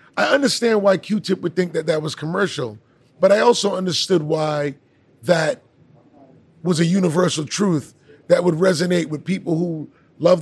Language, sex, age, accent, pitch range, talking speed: English, male, 30-49, American, 160-195 Hz, 155 wpm